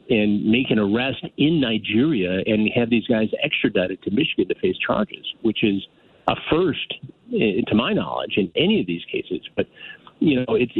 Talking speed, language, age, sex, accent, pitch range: 180 wpm, English, 50-69, male, American, 105-135 Hz